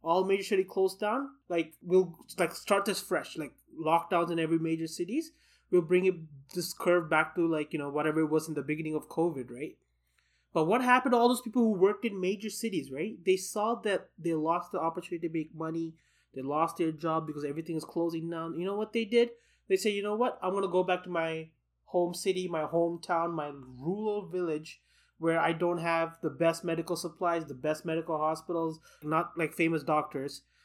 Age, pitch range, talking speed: 20-39, 160-195 Hz, 210 wpm